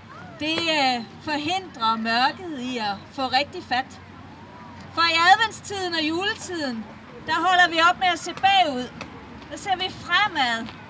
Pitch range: 275-360 Hz